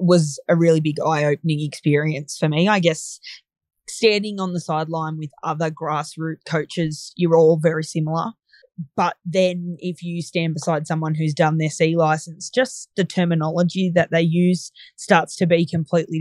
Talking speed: 165 wpm